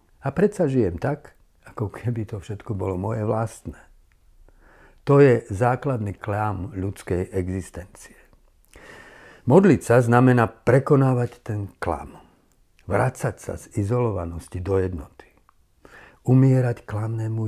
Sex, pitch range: male, 95-120 Hz